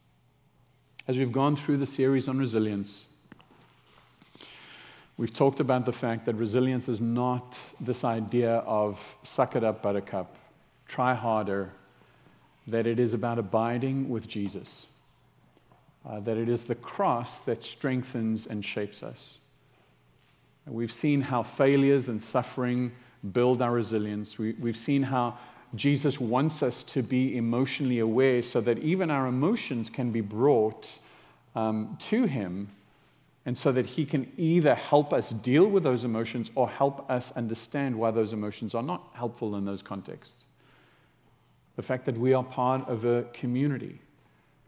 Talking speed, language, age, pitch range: 145 wpm, English, 50-69, 110-130 Hz